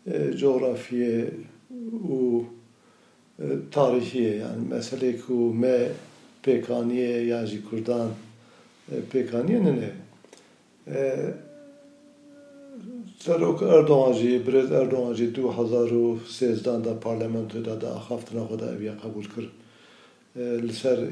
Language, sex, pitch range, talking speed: Turkish, male, 115-135 Hz, 85 wpm